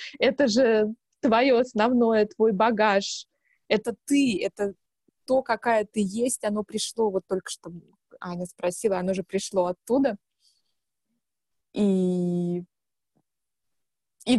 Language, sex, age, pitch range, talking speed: Russian, female, 20-39, 210-275 Hz, 110 wpm